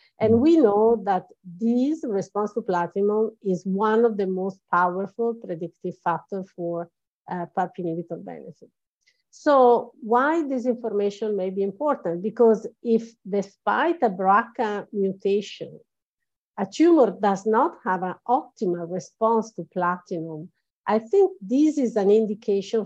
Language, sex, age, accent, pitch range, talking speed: English, female, 50-69, Italian, 185-240 Hz, 130 wpm